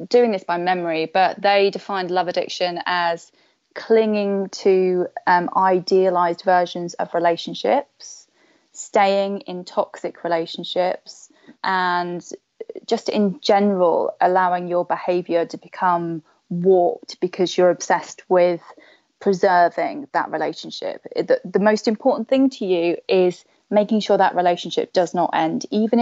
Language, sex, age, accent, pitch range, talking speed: English, female, 20-39, British, 175-220 Hz, 125 wpm